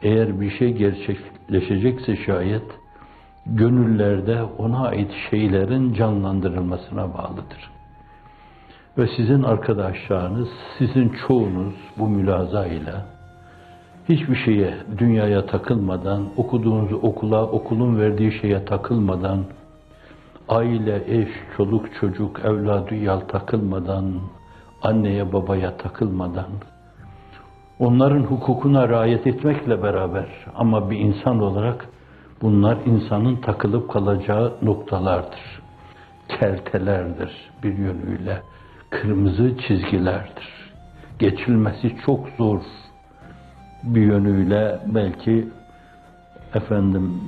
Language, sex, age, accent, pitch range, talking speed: Turkish, male, 60-79, native, 95-115 Hz, 80 wpm